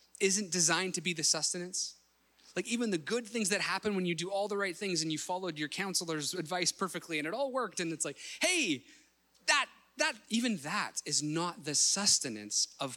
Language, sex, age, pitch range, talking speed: English, male, 20-39, 145-200 Hz, 205 wpm